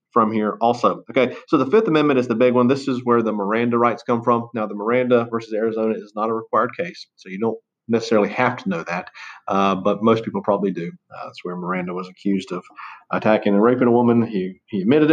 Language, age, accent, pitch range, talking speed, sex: English, 40-59, American, 100-120 Hz, 235 wpm, male